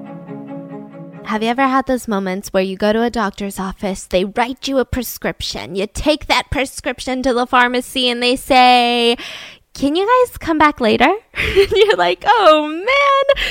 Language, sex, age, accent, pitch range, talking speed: English, female, 20-39, American, 240-320 Hz, 170 wpm